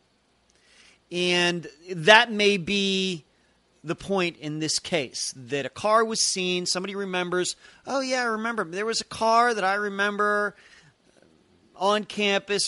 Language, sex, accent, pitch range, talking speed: English, male, American, 135-185 Hz, 135 wpm